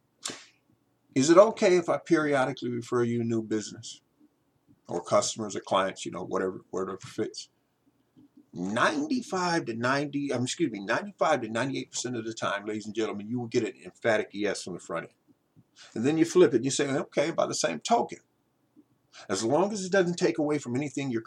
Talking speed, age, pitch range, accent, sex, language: 190 wpm, 50-69, 120-190 Hz, American, male, English